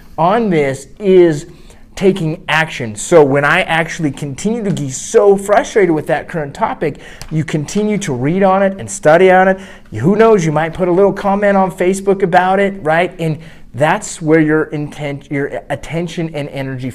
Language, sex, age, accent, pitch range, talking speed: English, male, 30-49, American, 135-170 Hz, 175 wpm